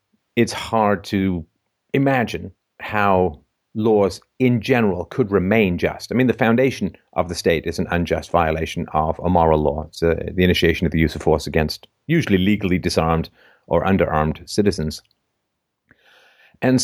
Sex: male